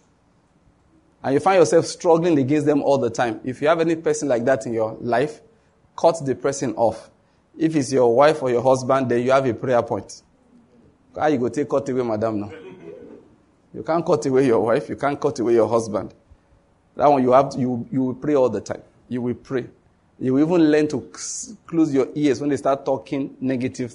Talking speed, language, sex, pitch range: 210 wpm, English, male, 120-155 Hz